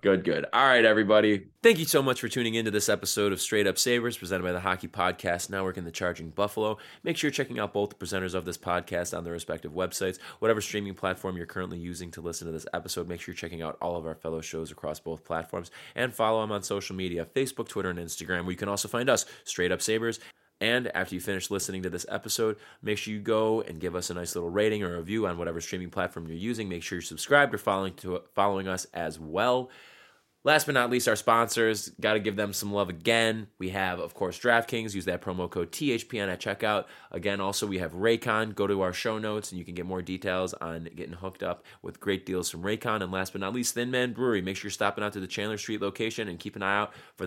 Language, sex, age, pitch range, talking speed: English, male, 20-39, 90-110 Hz, 255 wpm